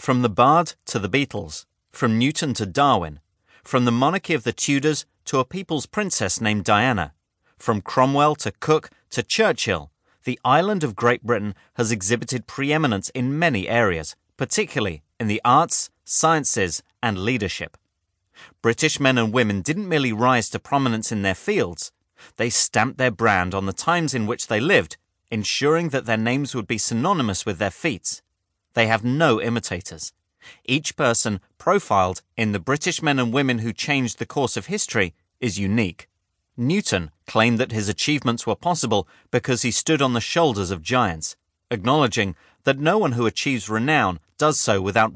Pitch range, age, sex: 100-135 Hz, 30-49, male